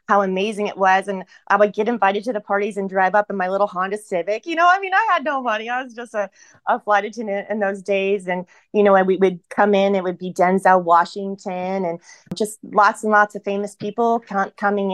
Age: 30-49